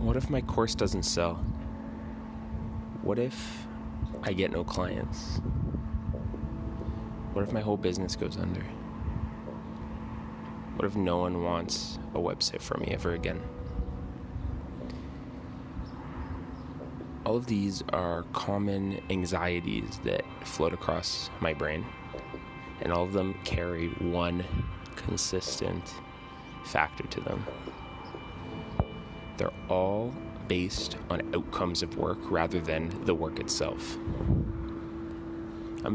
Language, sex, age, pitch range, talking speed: English, male, 20-39, 80-100 Hz, 105 wpm